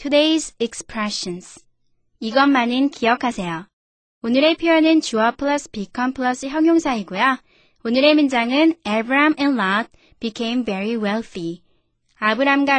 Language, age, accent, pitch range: Korean, 20-39, native, 210-285 Hz